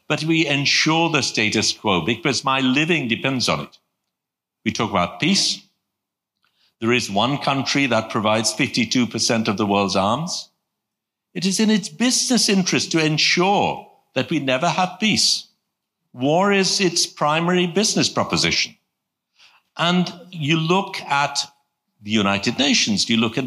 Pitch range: 120-175 Hz